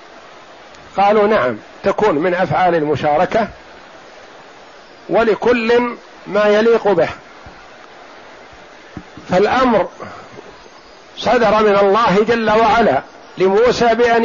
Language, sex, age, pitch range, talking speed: Arabic, male, 50-69, 175-225 Hz, 75 wpm